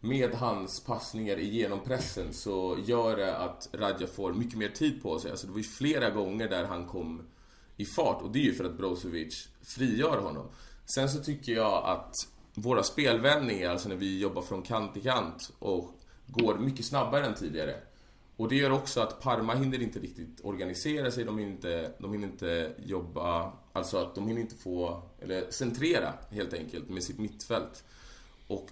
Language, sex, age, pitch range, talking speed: Swedish, male, 20-39, 90-120 Hz, 185 wpm